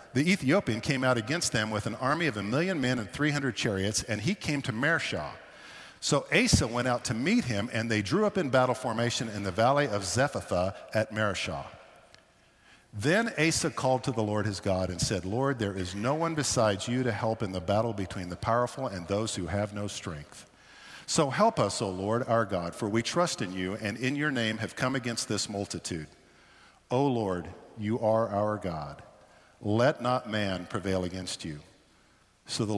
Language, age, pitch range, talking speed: English, 50-69, 95-125 Hz, 200 wpm